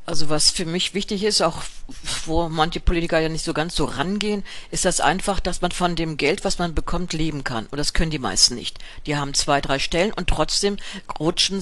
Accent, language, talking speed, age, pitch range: German, German, 220 wpm, 50-69, 150-180 Hz